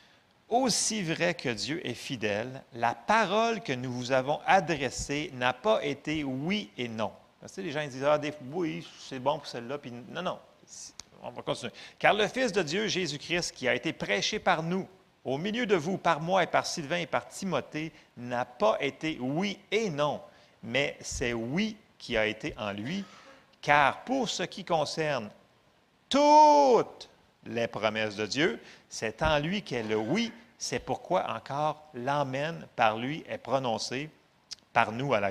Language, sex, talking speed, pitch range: French, male, 180 wpm, 125-190 Hz